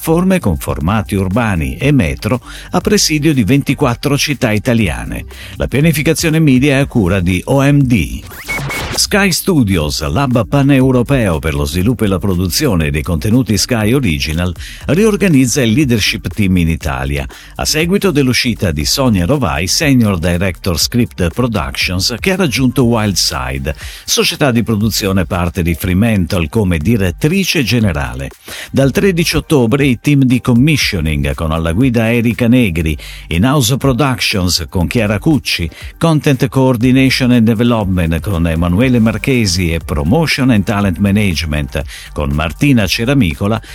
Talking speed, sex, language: 130 wpm, male, Italian